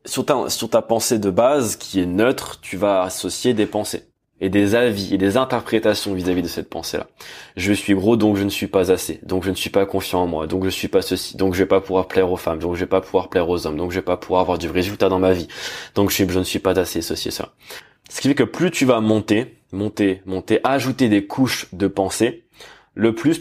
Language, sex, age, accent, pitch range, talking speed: French, male, 20-39, French, 95-125 Hz, 270 wpm